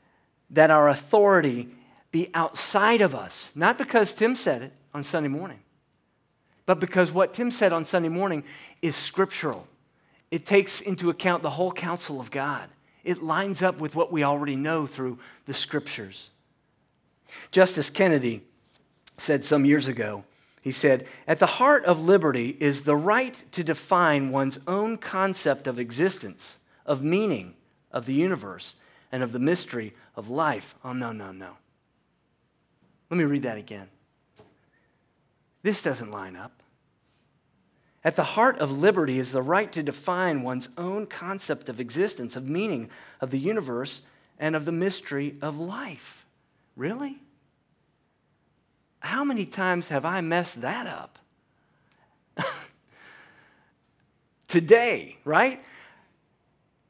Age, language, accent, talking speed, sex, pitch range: 40-59, English, American, 135 wpm, male, 135-185 Hz